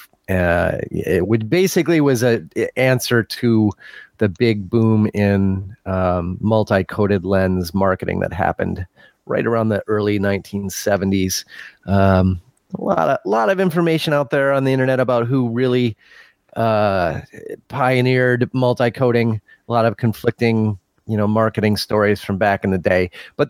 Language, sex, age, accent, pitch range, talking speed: English, male, 30-49, American, 100-130 Hz, 150 wpm